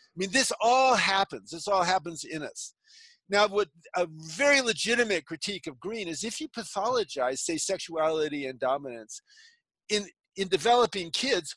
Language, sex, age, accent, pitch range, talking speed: English, male, 50-69, American, 155-225 Hz, 155 wpm